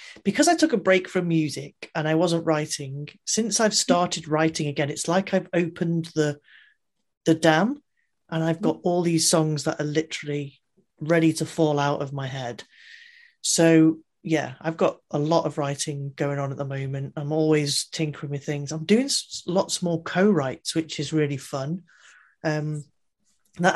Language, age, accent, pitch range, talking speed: English, 30-49, British, 145-170 Hz, 170 wpm